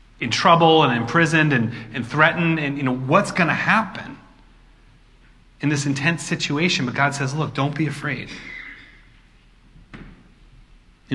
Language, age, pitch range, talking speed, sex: English, 30-49, 125-155 Hz, 135 wpm, male